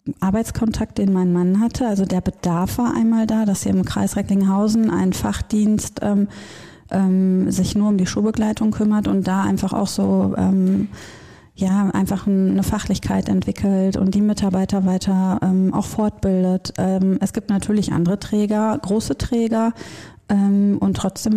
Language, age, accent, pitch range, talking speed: German, 30-49, German, 185-205 Hz, 155 wpm